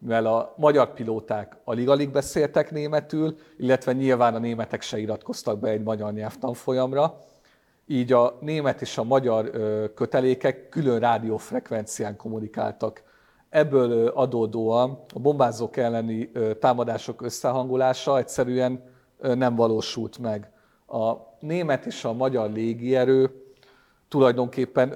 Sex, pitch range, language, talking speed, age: male, 110-135 Hz, Hungarian, 110 wpm, 50-69